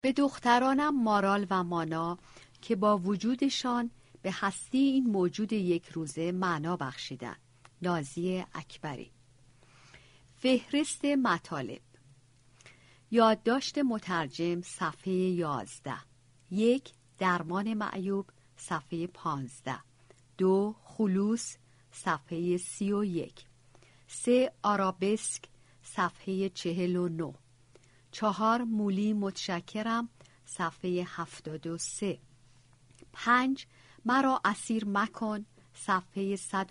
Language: Persian